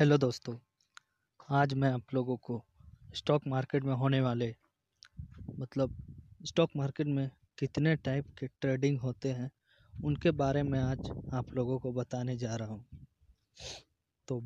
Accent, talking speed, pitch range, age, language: native, 140 wpm, 120-145 Hz, 20-39, Hindi